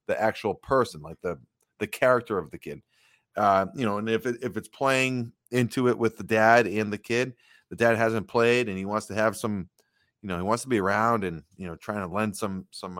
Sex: male